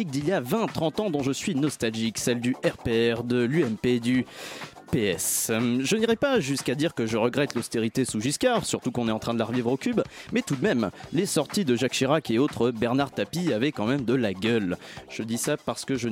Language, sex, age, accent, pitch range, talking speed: French, male, 30-49, French, 125-185 Hz, 230 wpm